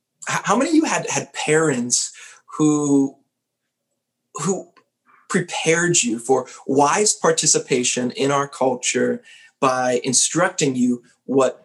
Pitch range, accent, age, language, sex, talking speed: 135-200 Hz, American, 30-49, English, male, 110 wpm